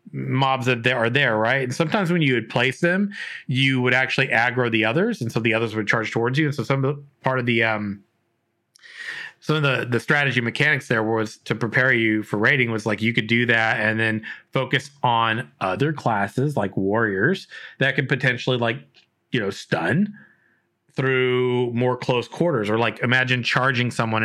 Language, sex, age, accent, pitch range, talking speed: English, male, 30-49, American, 115-145 Hz, 195 wpm